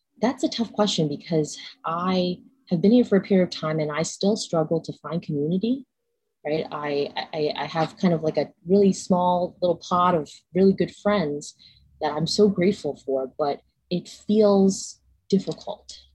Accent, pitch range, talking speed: American, 150-195 Hz, 175 wpm